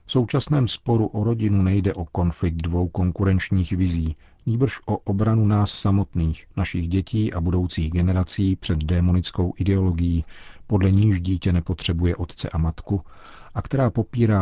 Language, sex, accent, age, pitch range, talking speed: Czech, male, native, 40-59, 85-100 Hz, 140 wpm